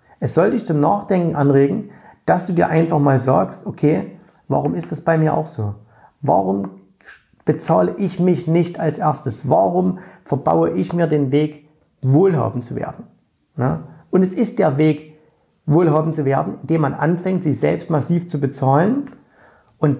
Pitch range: 130-170 Hz